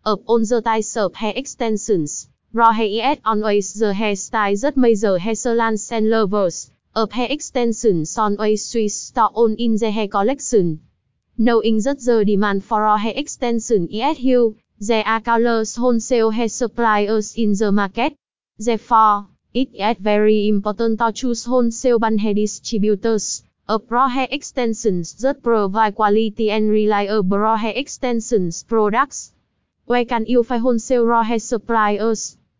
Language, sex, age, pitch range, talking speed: Vietnamese, female, 20-39, 215-240 Hz, 145 wpm